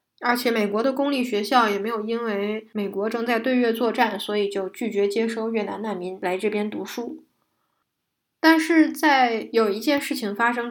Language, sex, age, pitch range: Chinese, female, 10-29, 205-250 Hz